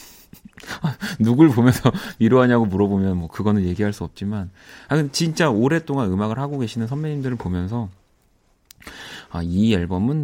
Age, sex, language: 30-49, male, Korean